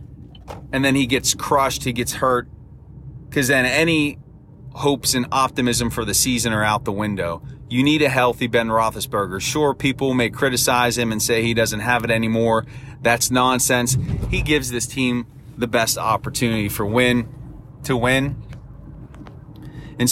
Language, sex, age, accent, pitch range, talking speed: English, male, 30-49, American, 115-140 Hz, 160 wpm